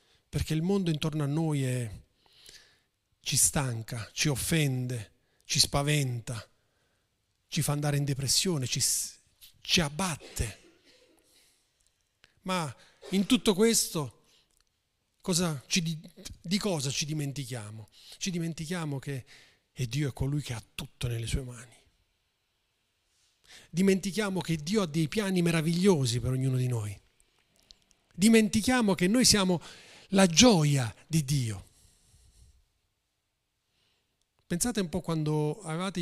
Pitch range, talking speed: 125-180 Hz, 115 wpm